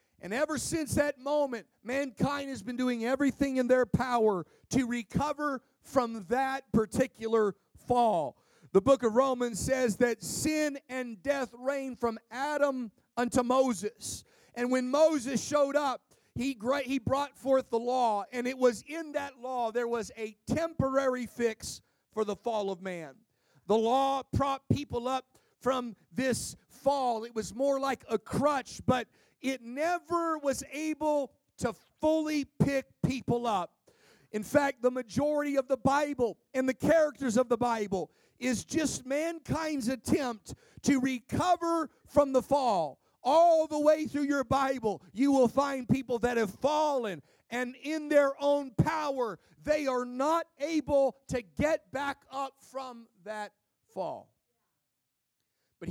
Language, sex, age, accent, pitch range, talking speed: English, male, 40-59, American, 235-285 Hz, 145 wpm